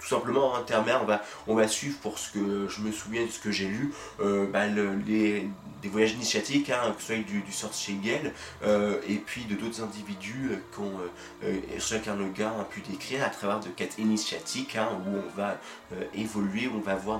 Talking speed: 220 wpm